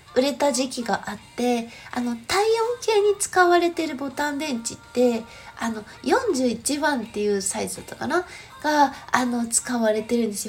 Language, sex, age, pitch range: Japanese, female, 20-39, 225-340 Hz